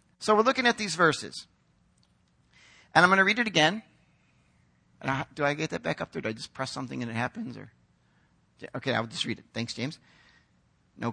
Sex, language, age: male, English, 50-69